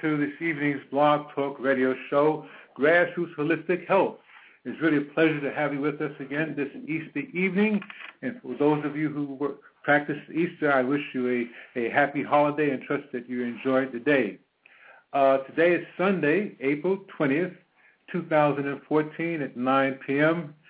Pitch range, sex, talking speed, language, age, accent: 130-155 Hz, male, 170 wpm, English, 60-79, American